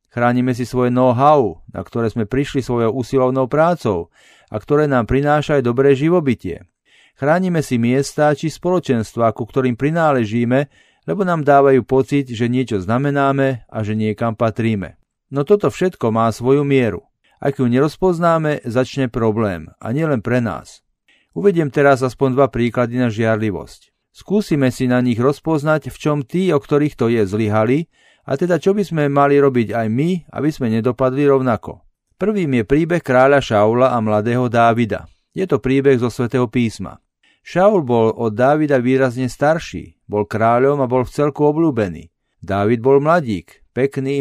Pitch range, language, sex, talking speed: 115-145 Hz, Slovak, male, 155 wpm